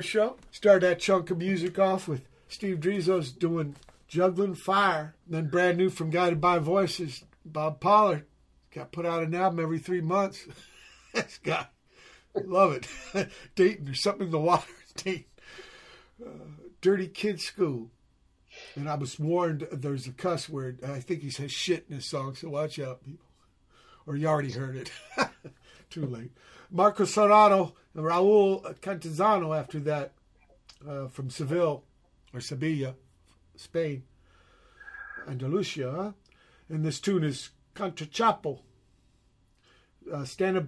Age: 60-79